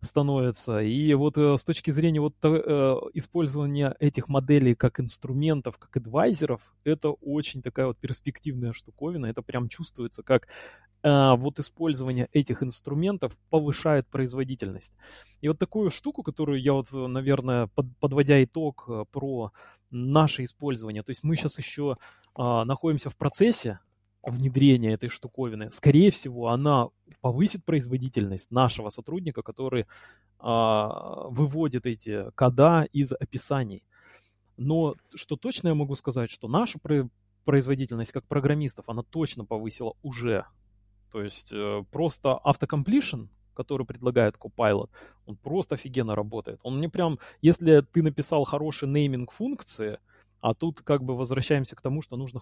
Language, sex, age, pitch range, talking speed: Russian, male, 20-39, 115-150 Hz, 135 wpm